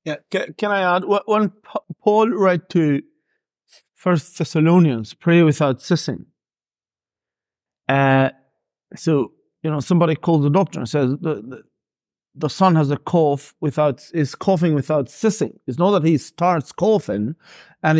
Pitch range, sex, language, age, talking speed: 150-185 Hz, male, English, 50-69, 145 wpm